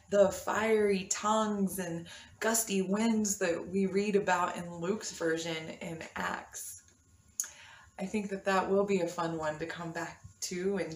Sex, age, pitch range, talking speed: female, 20-39, 160-200 Hz, 160 wpm